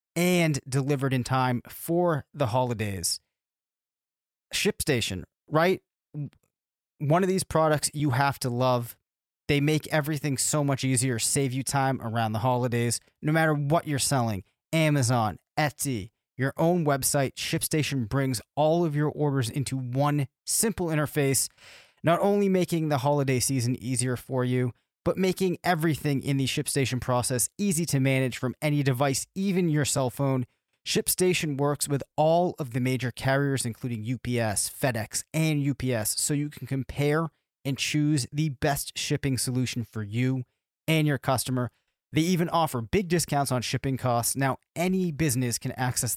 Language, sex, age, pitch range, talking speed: English, male, 30-49, 125-150 Hz, 150 wpm